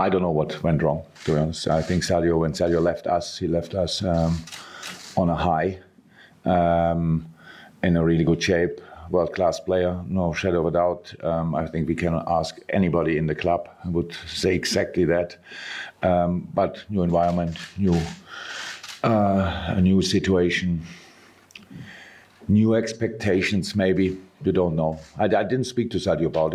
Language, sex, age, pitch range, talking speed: English, male, 50-69, 80-95 Hz, 165 wpm